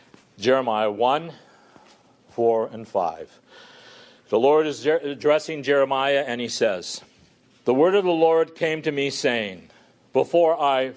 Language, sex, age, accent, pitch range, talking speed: English, male, 50-69, American, 110-160 Hz, 130 wpm